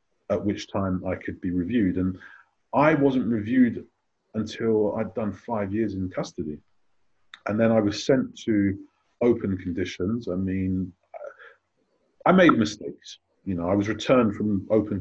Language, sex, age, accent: English, male, 30-49, British